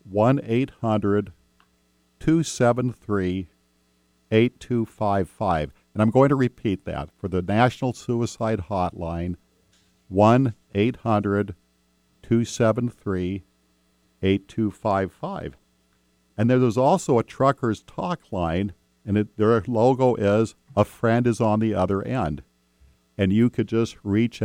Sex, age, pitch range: male, 50-69, 75-115 Hz